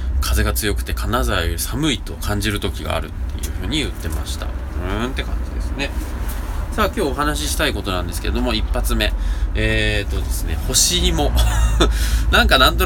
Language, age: Japanese, 20-39